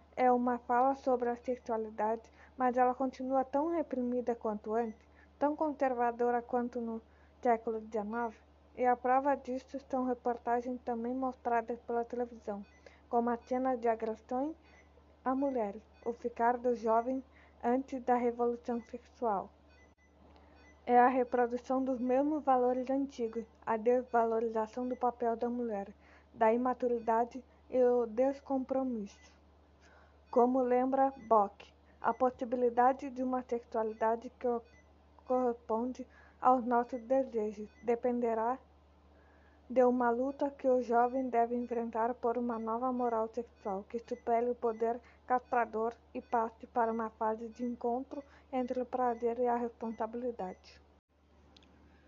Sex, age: female, 20-39